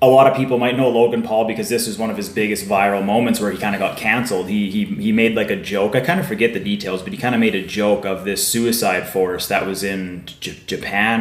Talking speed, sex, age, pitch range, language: 280 wpm, male, 20-39, 100-120 Hz, English